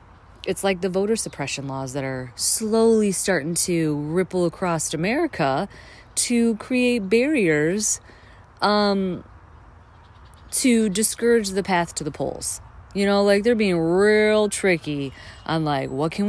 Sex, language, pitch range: female, English, 150-210 Hz